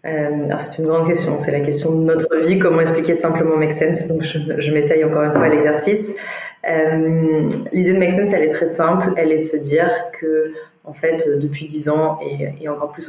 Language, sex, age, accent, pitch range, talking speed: French, female, 20-39, French, 150-165 Hz, 230 wpm